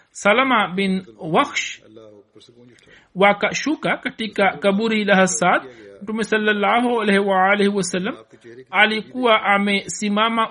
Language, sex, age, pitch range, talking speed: Swahili, male, 60-79, 195-225 Hz, 95 wpm